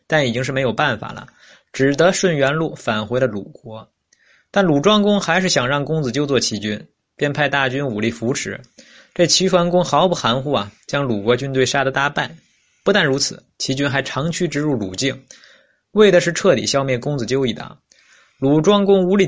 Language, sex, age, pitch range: Chinese, male, 20-39, 120-160 Hz